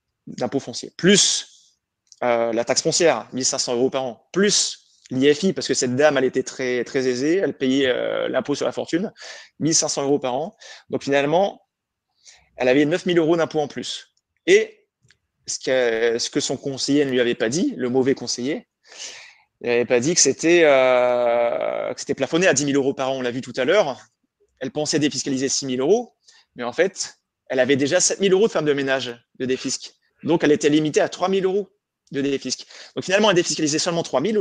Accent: French